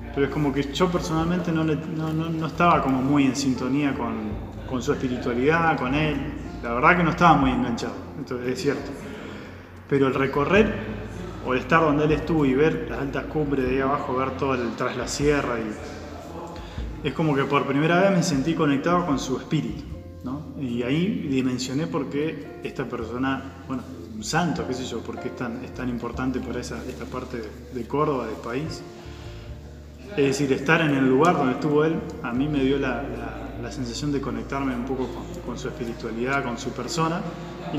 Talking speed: 200 wpm